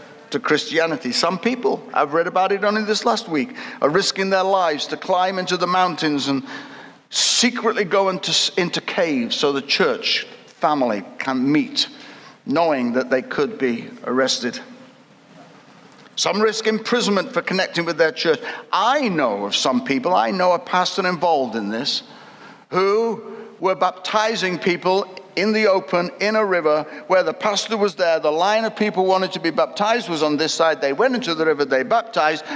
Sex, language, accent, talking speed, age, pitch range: male, English, British, 170 wpm, 60-79, 160-220 Hz